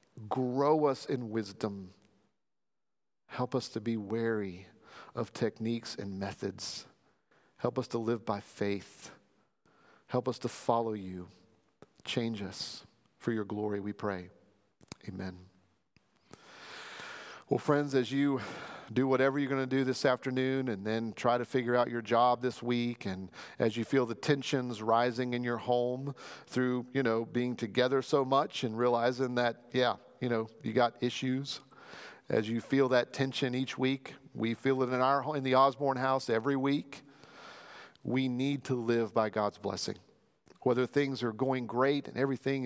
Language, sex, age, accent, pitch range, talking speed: English, male, 40-59, American, 115-130 Hz, 160 wpm